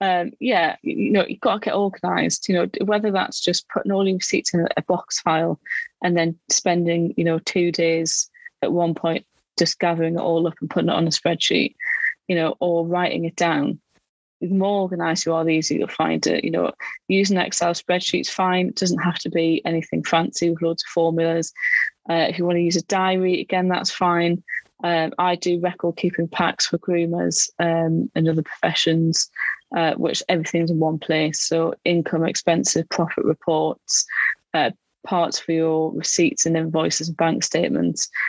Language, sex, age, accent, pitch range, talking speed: English, female, 20-39, British, 165-180 Hz, 190 wpm